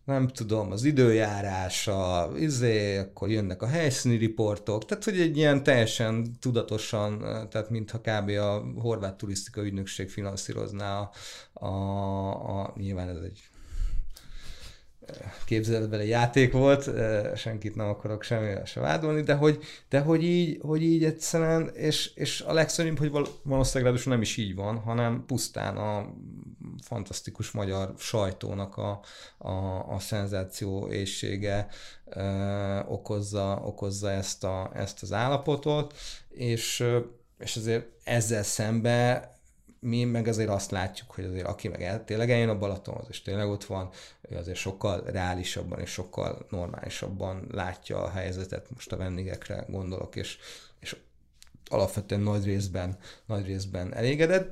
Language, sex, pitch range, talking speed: Hungarian, male, 100-120 Hz, 135 wpm